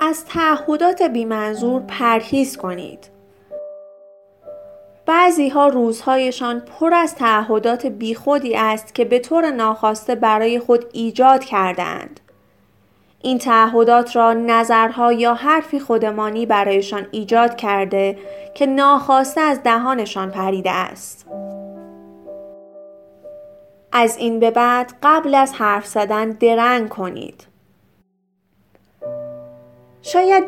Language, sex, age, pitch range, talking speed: Persian, female, 30-49, 210-270 Hz, 95 wpm